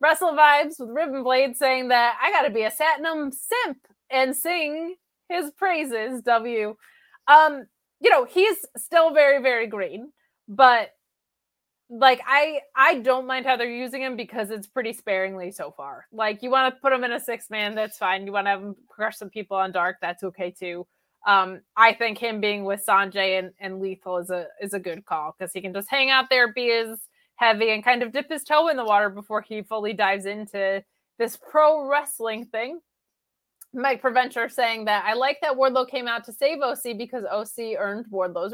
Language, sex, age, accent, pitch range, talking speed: English, female, 20-39, American, 205-270 Hz, 195 wpm